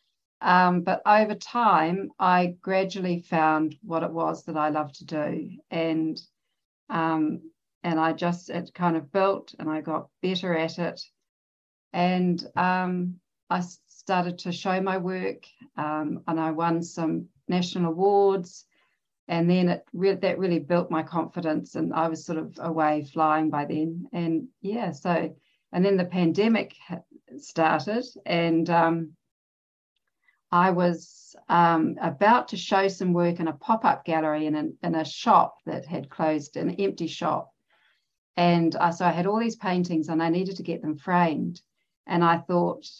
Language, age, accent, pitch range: English, 50-69, Australian, 160-185 Hz